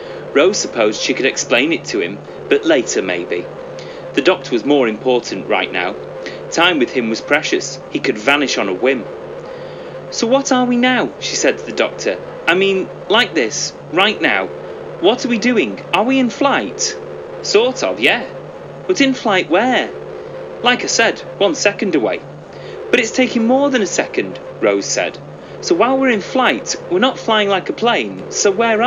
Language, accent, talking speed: English, British, 185 wpm